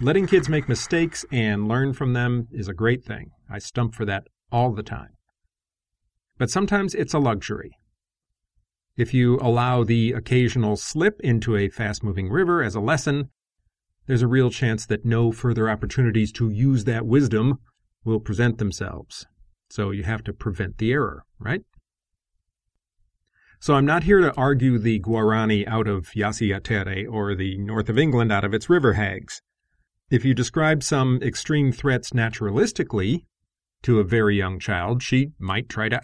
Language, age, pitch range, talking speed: English, 40-59, 105-130 Hz, 160 wpm